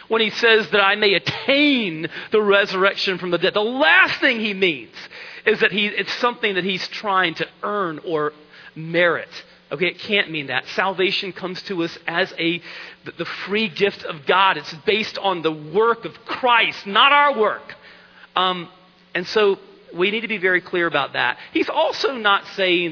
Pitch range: 180-265 Hz